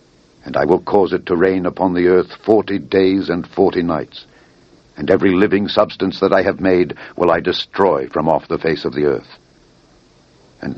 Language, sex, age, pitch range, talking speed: English, male, 60-79, 95-115 Hz, 190 wpm